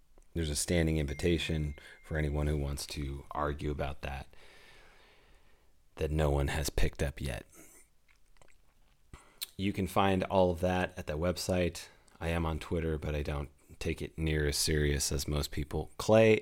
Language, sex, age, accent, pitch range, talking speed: English, male, 30-49, American, 75-90 Hz, 160 wpm